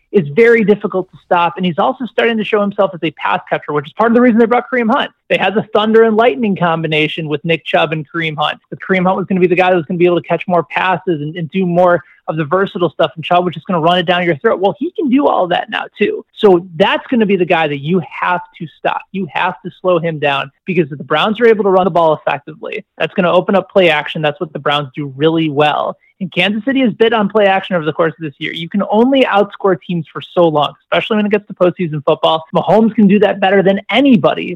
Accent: American